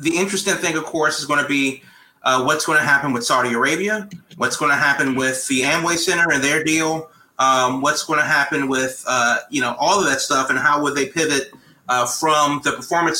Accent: American